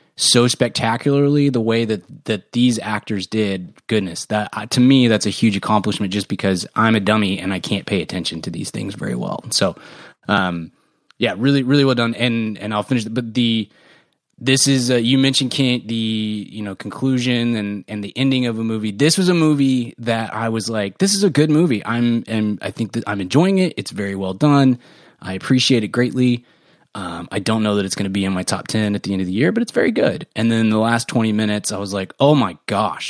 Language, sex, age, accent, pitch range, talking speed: English, male, 20-39, American, 100-125 Hz, 230 wpm